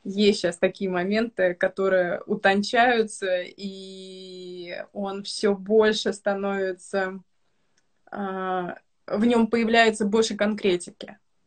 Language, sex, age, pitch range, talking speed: Russian, female, 20-39, 185-210 Hz, 90 wpm